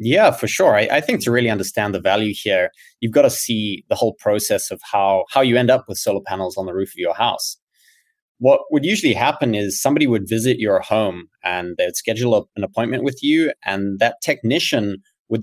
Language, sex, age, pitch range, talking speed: English, male, 20-39, 100-140 Hz, 220 wpm